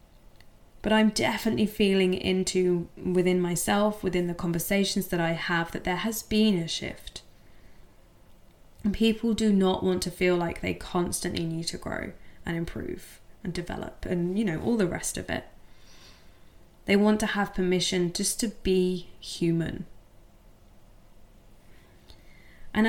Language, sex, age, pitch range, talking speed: English, female, 10-29, 170-215 Hz, 140 wpm